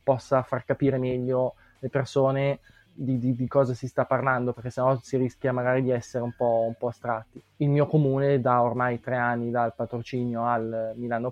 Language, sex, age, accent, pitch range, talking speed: Italian, male, 20-39, native, 120-135 Hz, 190 wpm